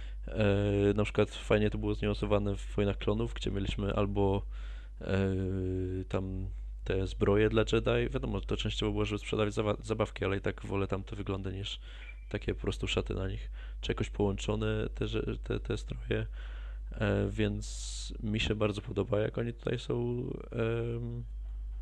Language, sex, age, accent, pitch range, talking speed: Polish, male, 20-39, native, 95-110 Hz, 160 wpm